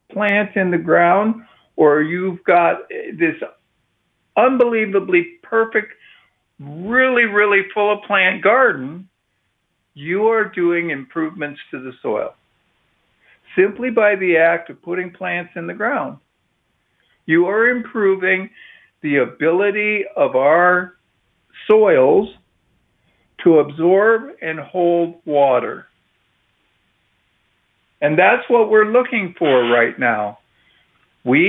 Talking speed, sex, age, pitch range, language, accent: 105 wpm, male, 60-79, 165-225 Hz, English, American